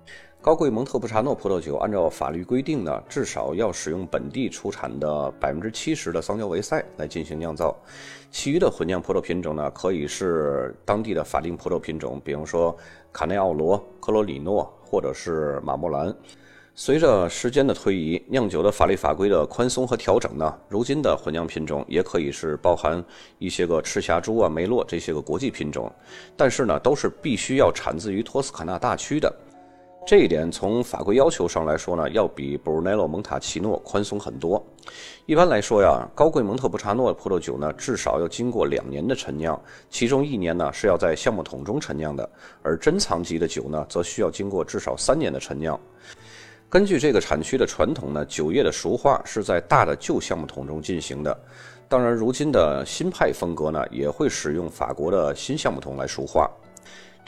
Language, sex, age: Chinese, male, 30-49